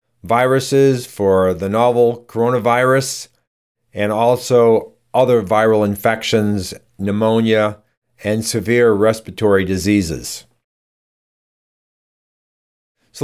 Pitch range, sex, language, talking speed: 110-130 Hz, male, English, 75 wpm